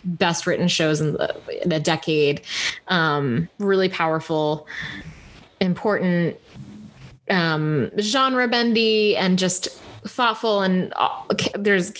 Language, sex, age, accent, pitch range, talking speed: English, female, 20-39, American, 170-215 Hz, 100 wpm